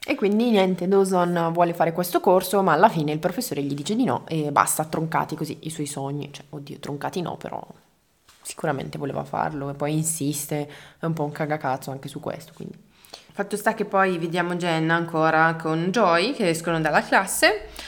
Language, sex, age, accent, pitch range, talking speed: Italian, female, 20-39, native, 155-200 Hz, 190 wpm